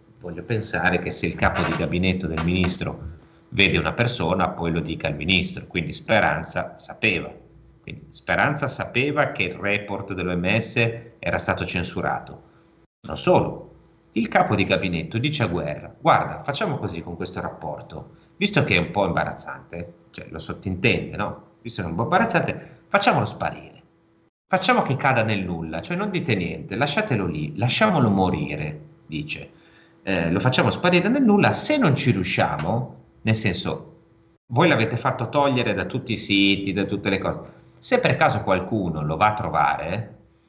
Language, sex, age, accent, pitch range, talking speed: Italian, male, 40-59, native, 90-140 Hz, 165 wpm